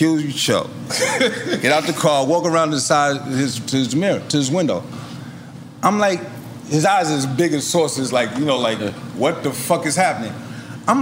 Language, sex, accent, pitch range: English, male, American, 135-215 Hz